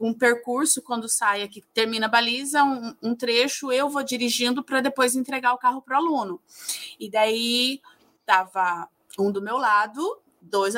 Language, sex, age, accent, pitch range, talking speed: Portuguese, female, 20-39, Brazilian, 220-275 Hz, 165 wpm